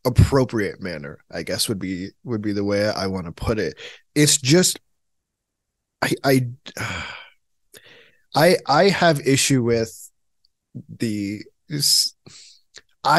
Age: 20-39